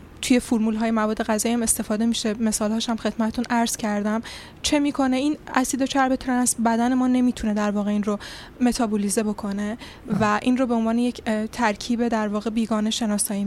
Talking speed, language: 170 wpm, Persian